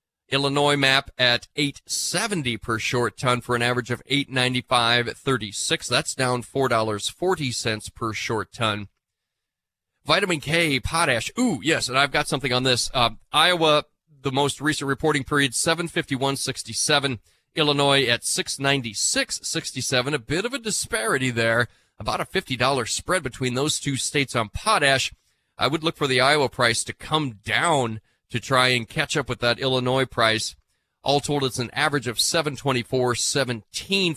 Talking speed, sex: 145 wpm, male